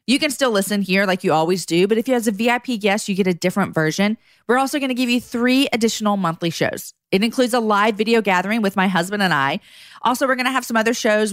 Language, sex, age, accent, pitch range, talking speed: English, female, 40-59, American, 175-235 Hz, 265 wpm